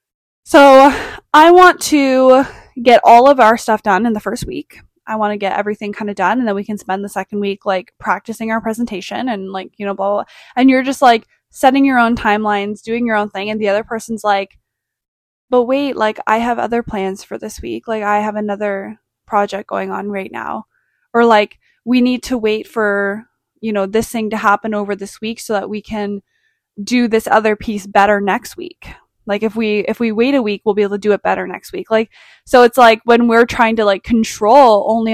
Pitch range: 200-235 Hz